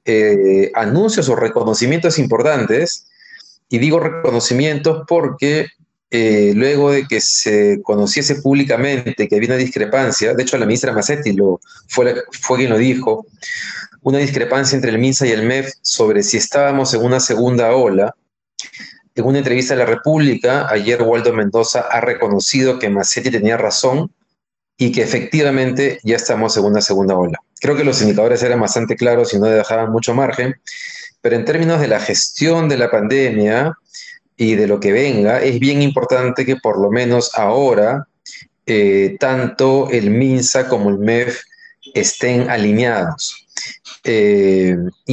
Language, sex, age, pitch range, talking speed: Spanish, male, 40-59, 115-140 Hz, 150 wpm